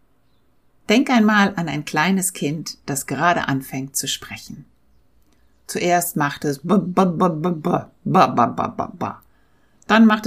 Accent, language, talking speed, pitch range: German, German, 95 wpm, 145-205 Hz